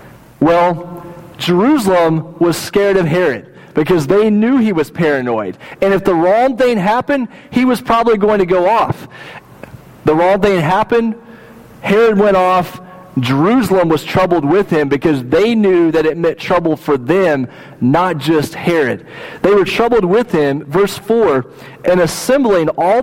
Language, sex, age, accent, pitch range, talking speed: English, male, 40-59, American, 150-205 Hz, 155 wpm